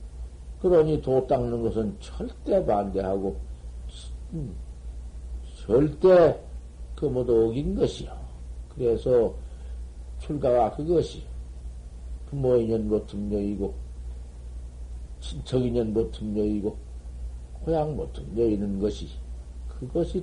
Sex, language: male, Korean